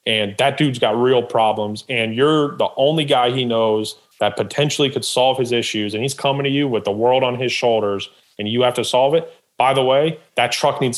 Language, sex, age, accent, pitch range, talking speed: English, male, 30-49, American, 105-125 Hz, 230 wpm